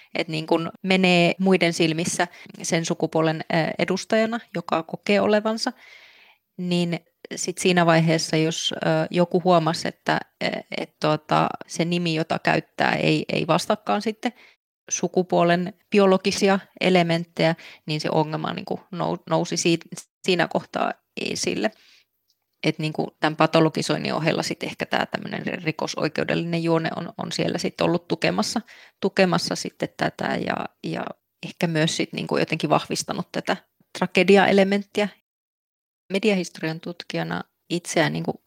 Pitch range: 160-190 Hz